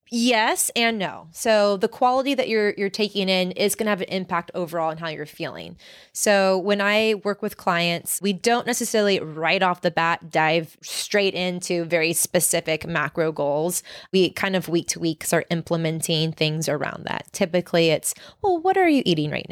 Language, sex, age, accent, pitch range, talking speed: English, female, 20-39, American, 165-220 Hz, 185 wpm